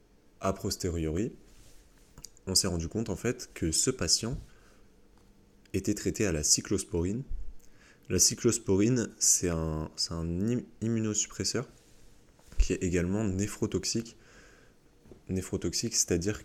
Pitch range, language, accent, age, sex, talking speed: 90-105 Hz, French, French, 20-39, male, 105 wpm